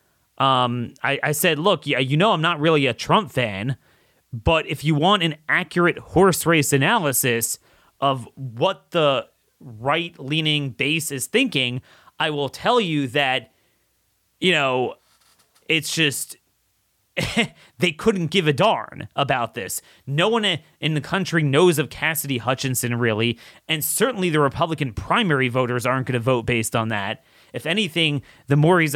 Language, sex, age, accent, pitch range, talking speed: English, male, 30-49, American, 130-170 Hz, 155 wpm